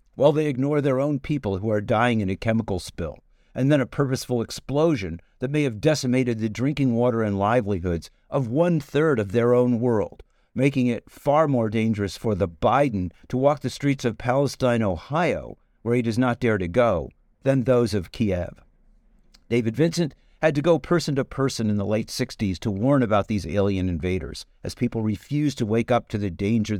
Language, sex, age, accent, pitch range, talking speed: English, male, 50-69, American, 105-135 Hz, 195 wpm